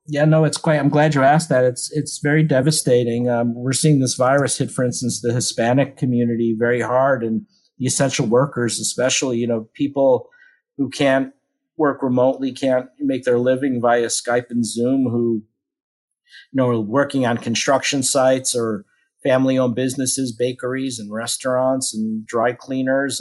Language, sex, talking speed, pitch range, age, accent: English, male, 165 wpm, 120-140 Hz, 50-69, American